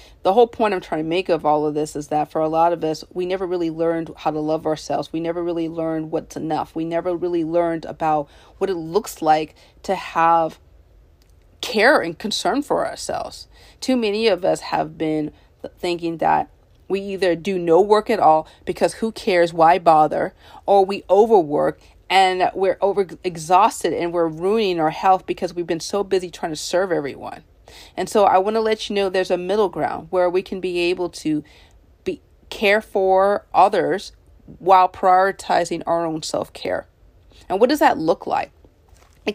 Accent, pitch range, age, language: American, 160-190 Hz, 40-59, English